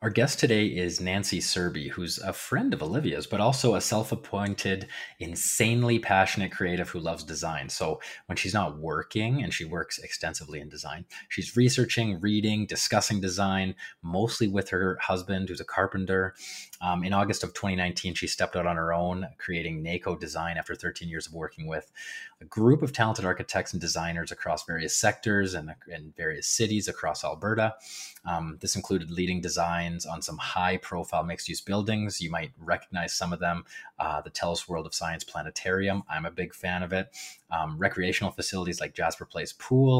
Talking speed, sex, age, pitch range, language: 175 wpm, male, 30-49, 85-105 Hz, English